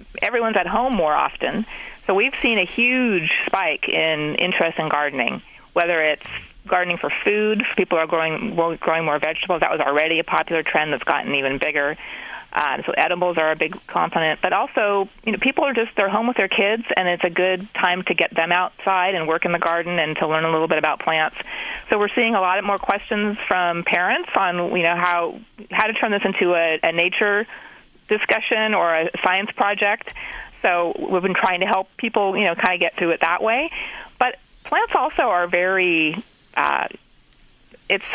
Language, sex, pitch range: English, female, 160-205 Hz